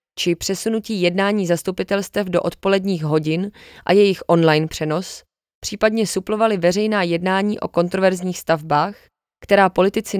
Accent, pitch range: native, 175-205 Hz